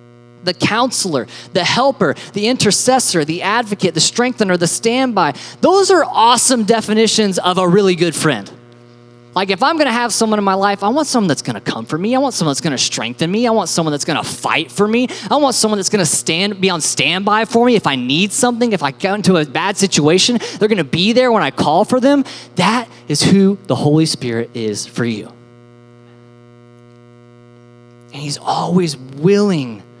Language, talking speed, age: English, 195 wpm, 20-39